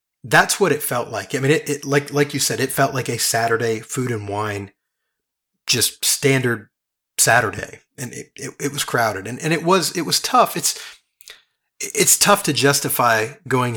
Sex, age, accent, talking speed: male, 30-49, American, 185 wpm